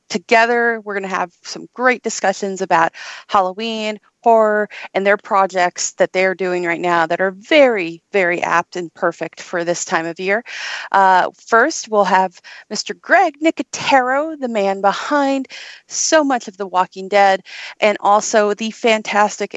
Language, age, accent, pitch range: English, 40-59, American, 180-230 Hz